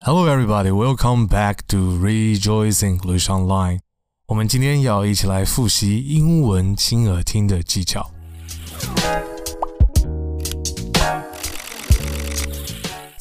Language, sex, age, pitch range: Chinese, male, 20-39, 95-125 Hz